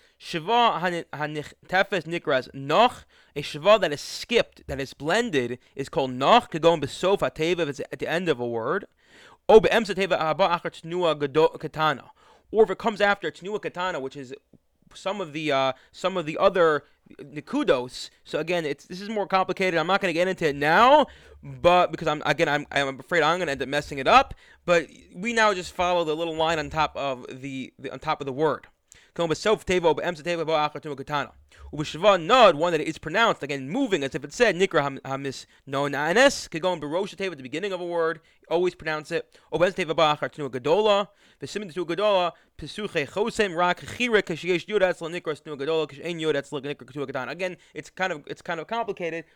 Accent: American